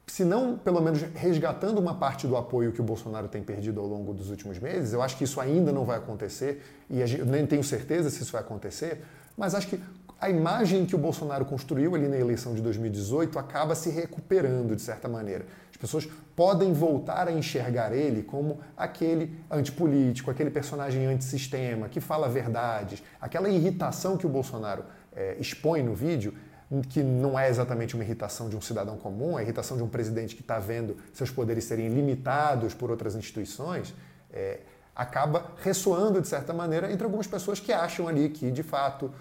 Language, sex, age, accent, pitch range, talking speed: Portuguese, male, 40-59, Brazilian, 120-165 Hz, 185 wpm